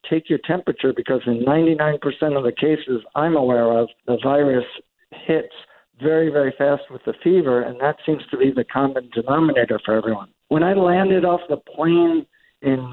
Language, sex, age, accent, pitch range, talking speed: English, male, 60-79, American, 135-160 Hz, 175 wpm